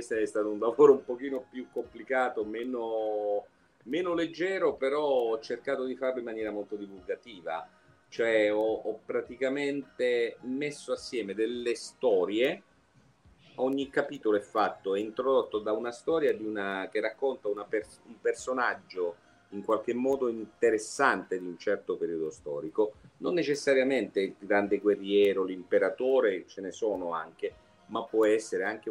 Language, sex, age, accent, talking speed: Italian, male, 40-59, native, 135 wpm